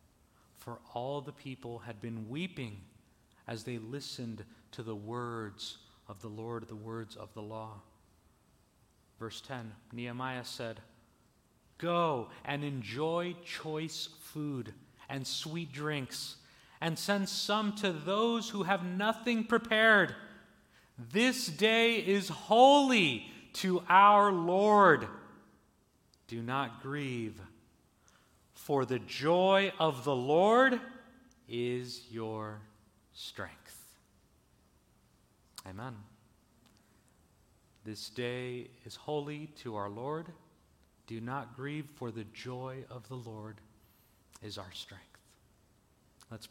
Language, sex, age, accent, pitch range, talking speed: English, male, 40-59, American, 110-150 Hz, 105 wpm